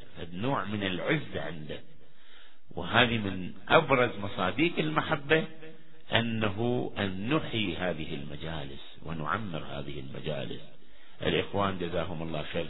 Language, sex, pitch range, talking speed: Arabic, male, 90-135 Hz, 100 wpm